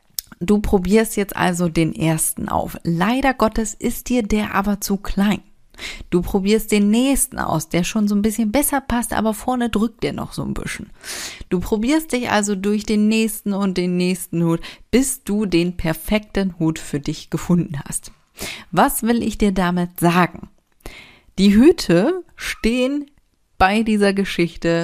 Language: German